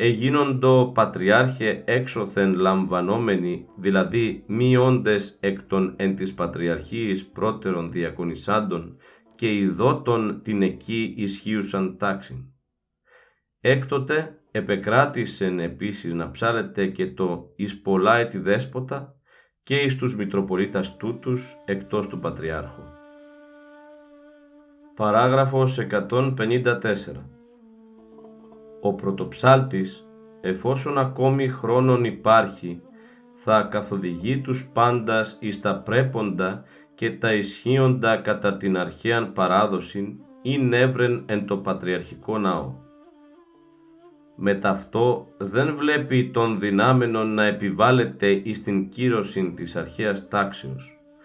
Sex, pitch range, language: male, 95-130 Hz, Greek